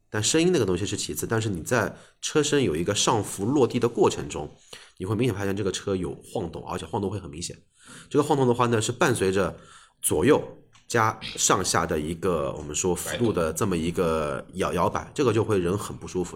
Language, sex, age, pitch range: Chinese, male, 30-49, 95-120 Hz